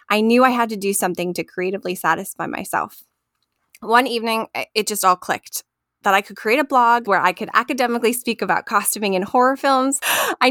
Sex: female